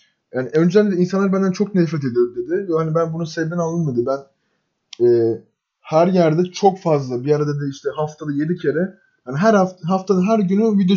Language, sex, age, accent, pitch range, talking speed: Turkish, male, 20-39, native, 140-185 Hz, 185 wpm